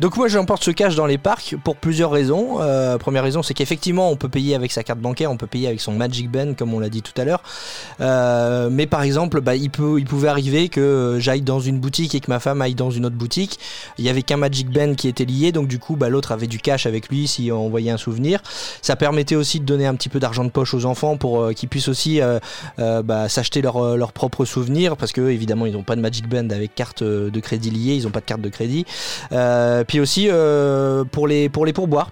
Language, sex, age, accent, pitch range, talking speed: French, male, 20-39, French, 115-145 Hz, 260 wpm